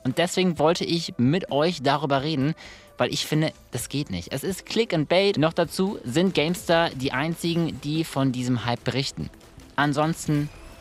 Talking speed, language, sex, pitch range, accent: 170 wpm, German, male, 120-160 Hz, German